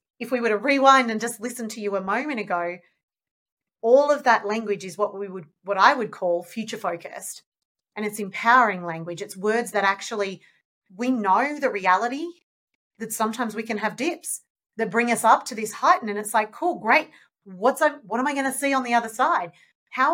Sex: female